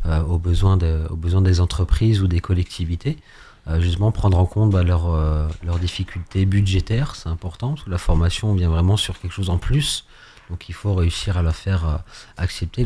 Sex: male